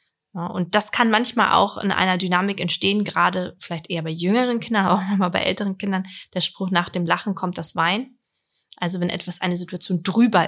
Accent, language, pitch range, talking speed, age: German, German, 180-215 Hz, 195 wpm, 20-39